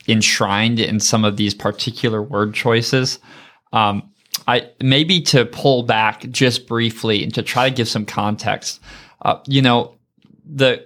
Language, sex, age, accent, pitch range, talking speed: English, male, 20-39, American, 115-150 Hz, 150 wpm